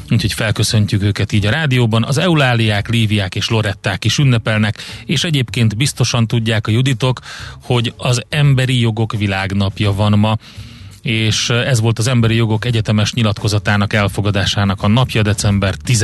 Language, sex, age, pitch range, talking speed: Hungarian, male, 30-49, 105-120 Hz, 140 wpm